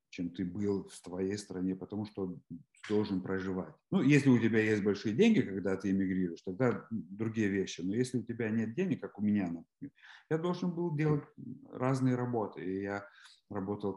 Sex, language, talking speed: male, Russian, 170 wpm